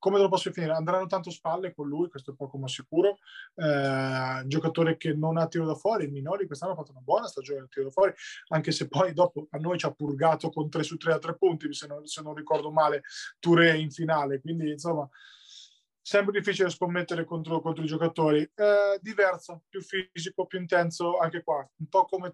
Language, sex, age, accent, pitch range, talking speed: Italian, male, 20-39, native, 155-185 Hz, 210 wpm